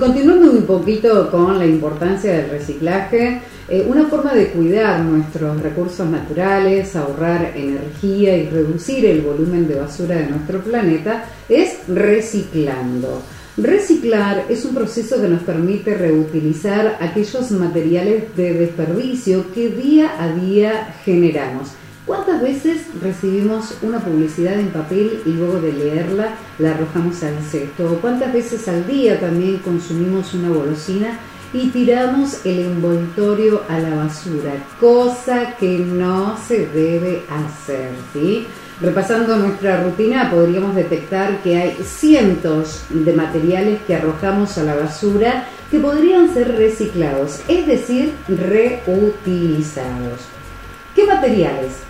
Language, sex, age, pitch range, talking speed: Spanish, female, 40-59, 165-220 Hz, 125 wpm